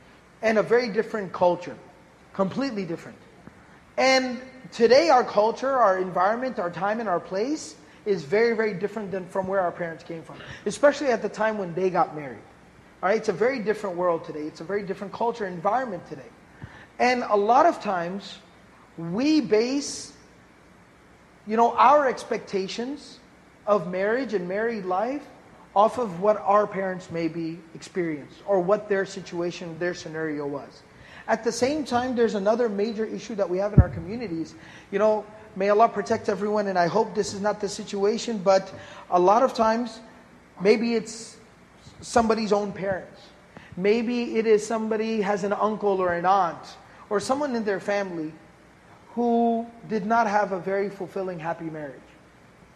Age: 30-49